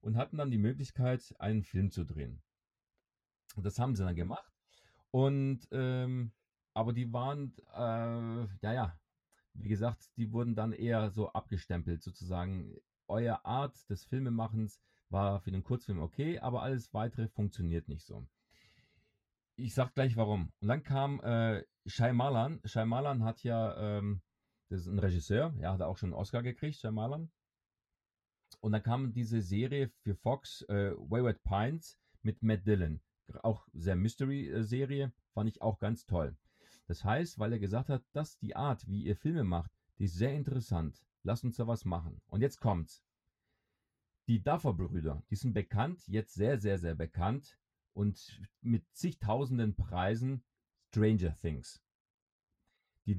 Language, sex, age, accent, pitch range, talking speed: German, male, 40-59, German, 95-125 Hz, 155 wpm